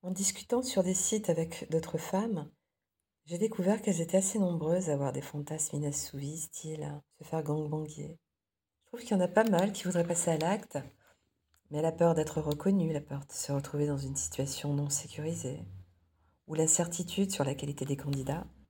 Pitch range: 130-175 Hz